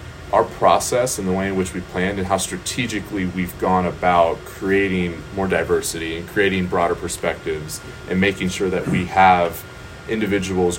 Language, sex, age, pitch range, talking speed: English, male, 20-39, 90-95 Hz, 160 wpm